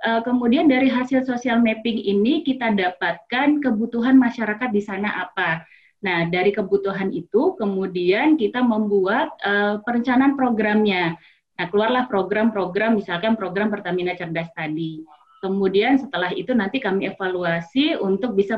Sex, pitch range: female, 195-260 Hz